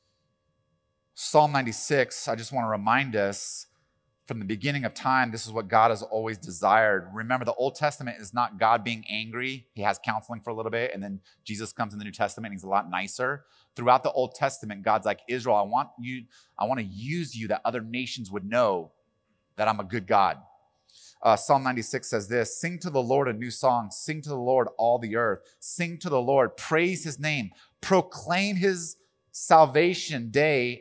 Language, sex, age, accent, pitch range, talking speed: English, male, 30-49, American, 110-155 Hz, 205 wpm